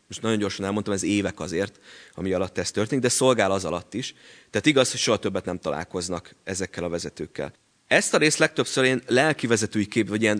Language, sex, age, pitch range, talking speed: Hungarian, male, 30-49, 95-120 Hz, 210 wpm